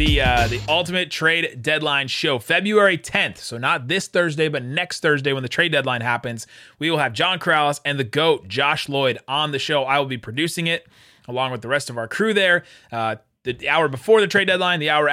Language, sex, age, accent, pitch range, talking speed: English, male, 30-49, American, 130-165 Hz, 225 wpm